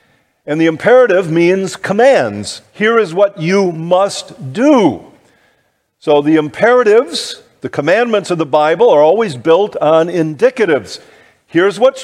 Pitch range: 135-190 Hz